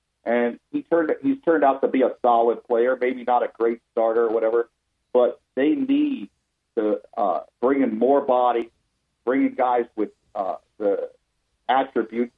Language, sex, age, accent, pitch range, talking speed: English, male, 50-69, American, 115-140 Hz, 160 wpm